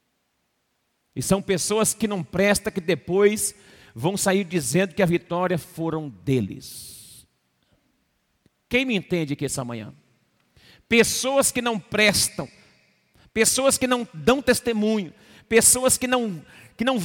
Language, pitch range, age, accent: Portuguese, 140-205 Hz, 50-69, Brazilian